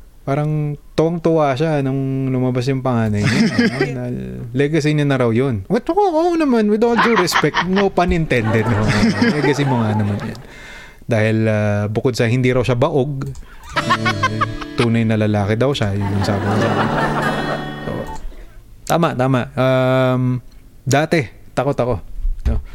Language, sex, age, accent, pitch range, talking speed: Filipino, male, 20-39, native, 105-135 Hz, 145 wpm